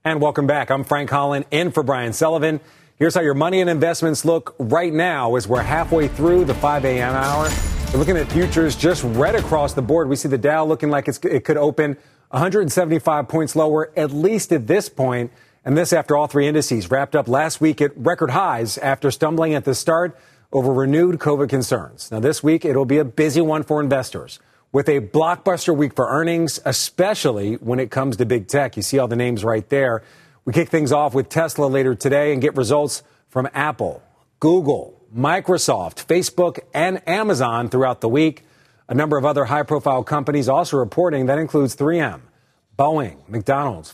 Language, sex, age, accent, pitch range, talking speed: English, male, 40-59, American, 130-160 Hz, 195 wpm